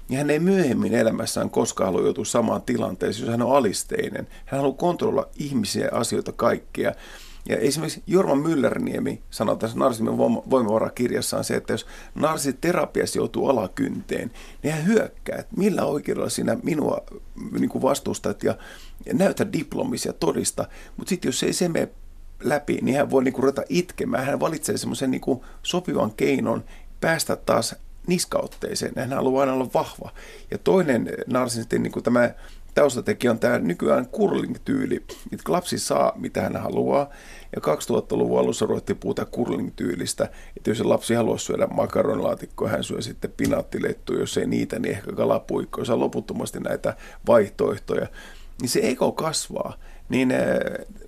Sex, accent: male, native